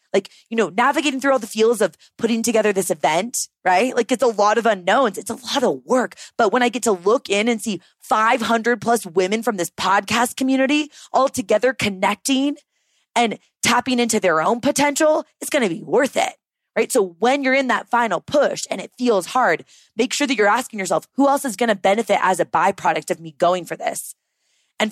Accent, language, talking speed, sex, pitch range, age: American, English, 210 wpm, female, 200-260 Hz, 20-39